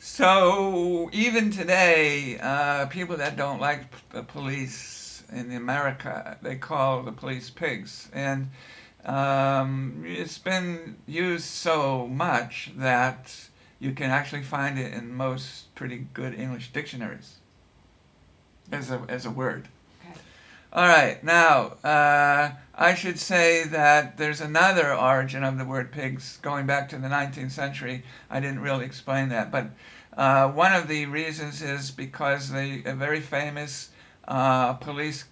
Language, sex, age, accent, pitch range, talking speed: English, male, 60-79, American, 130-150 Hz, 135 wpm